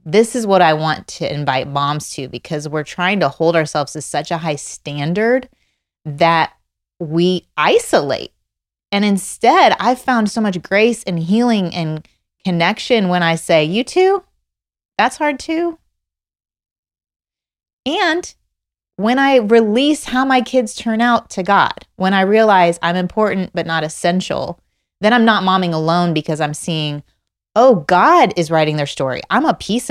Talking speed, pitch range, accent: 155 wpm, 155-210 Hz, American